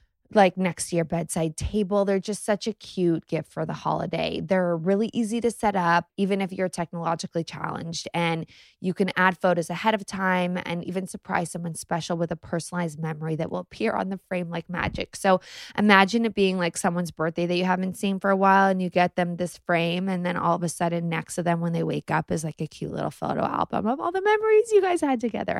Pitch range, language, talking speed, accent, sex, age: 165-195 Hz, English, 230 wpm, American, female, 20-39